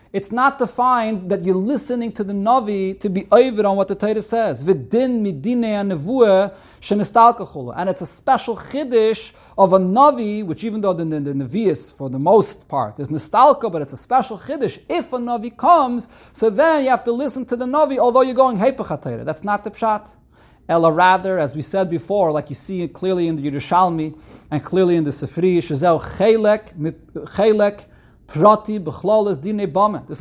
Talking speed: 170 wpm